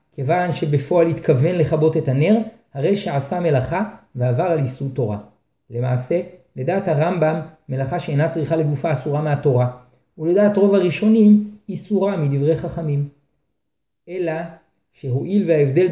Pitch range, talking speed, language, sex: 140-195 Hz, 115 wpm, Hebrew, male